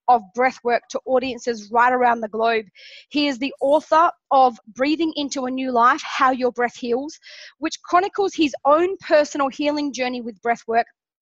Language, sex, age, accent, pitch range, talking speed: English, female, 20-39, Australian, 240-290 Hz, 175 wpm